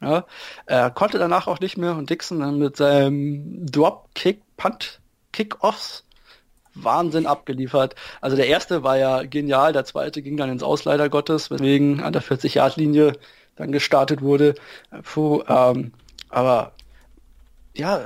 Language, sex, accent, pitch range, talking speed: German, male, German, 140-175 Hz, 140 wpm